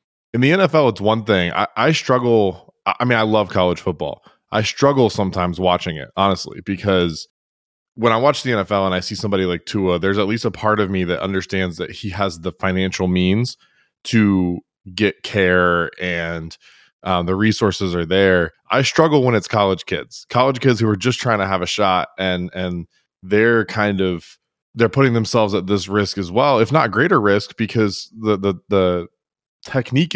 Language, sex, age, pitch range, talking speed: English, male, 20-39, 95-115 Hz, 190 wpm